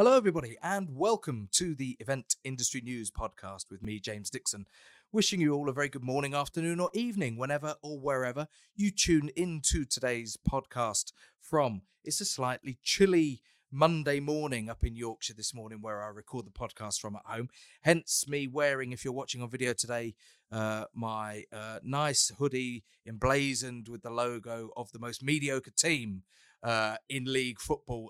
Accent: British